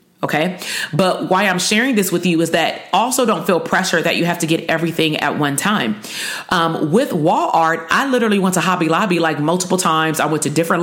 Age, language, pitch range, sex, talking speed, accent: 30-49, English, 165-210 Hz, female, 220 wpm, American